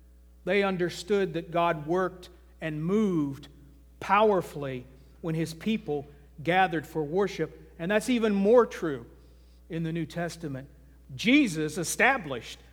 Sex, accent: male, American